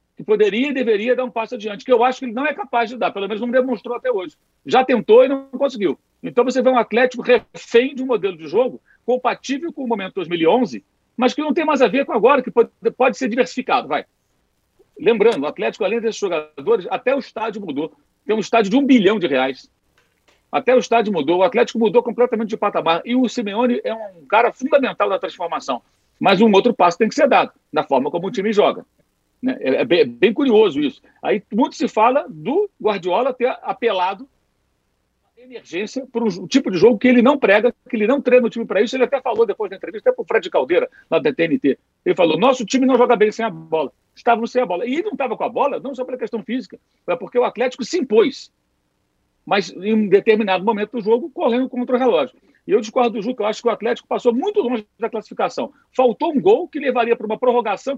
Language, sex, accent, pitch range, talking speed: Portuguese, male, Brazilian, 225-265 Hz, 230 wpm